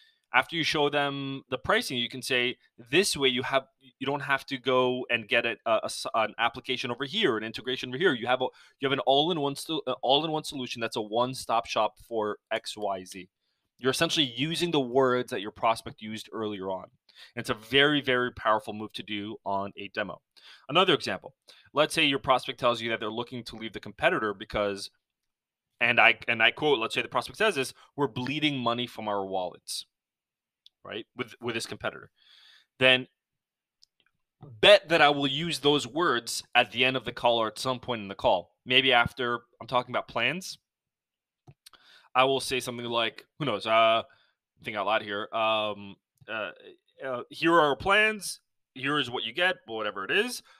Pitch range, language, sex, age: 115-140 Hz, English, male, 20-39